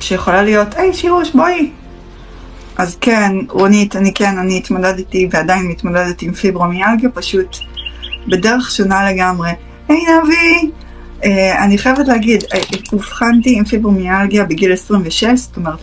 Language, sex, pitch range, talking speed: Hebrew, female, 150-210 Hz, 135 wpm